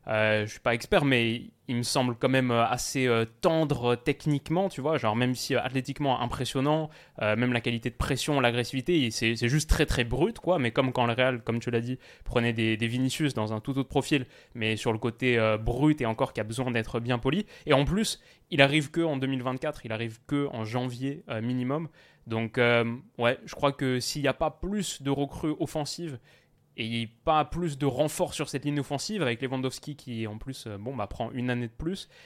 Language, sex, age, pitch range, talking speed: French, male, 20-39, 120-150 Hz, 225 wpm